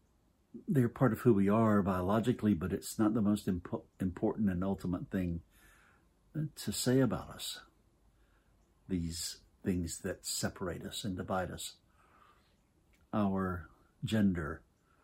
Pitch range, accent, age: 90-120 Hz, American, 60-79